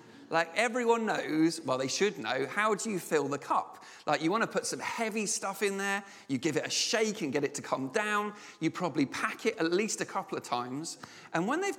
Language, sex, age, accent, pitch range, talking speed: English, male, 40-59, British, 160-215 Hz, 240 wpm